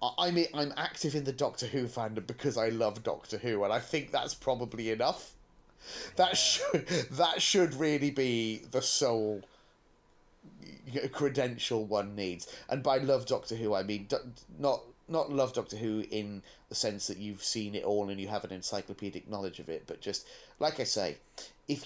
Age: 30-49